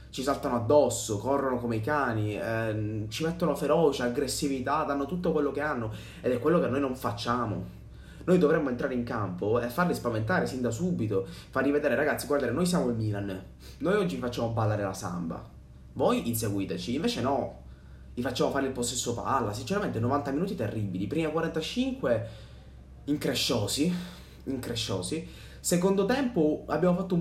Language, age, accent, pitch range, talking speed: Italian, 20-39, native, 110-145 Hz, 160 wpm